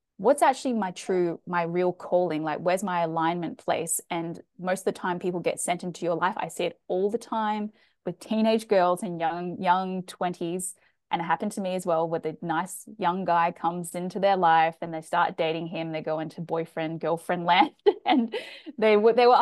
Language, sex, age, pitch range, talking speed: English, female, 20-39, 170-210 Hz, 210 wpm